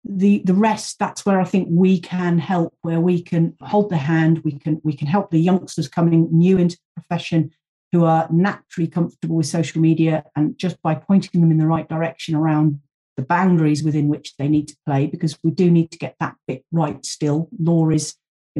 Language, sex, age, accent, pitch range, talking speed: English, female, 40-59, British, 155-185 Hz, 215 wpm